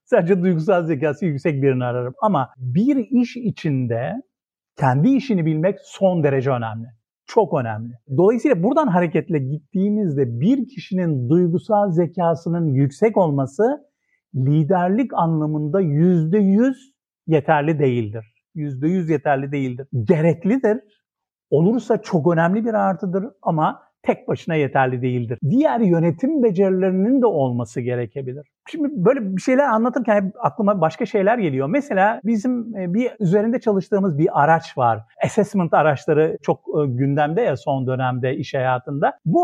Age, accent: 50-69, native